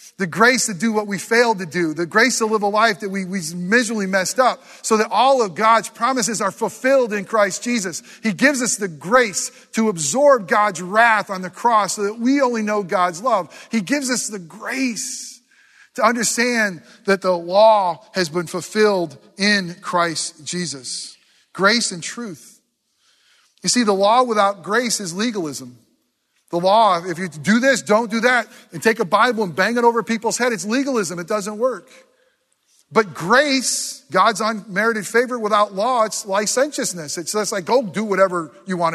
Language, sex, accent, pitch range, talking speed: English, male, American, 180-235 Hz, 180 wpm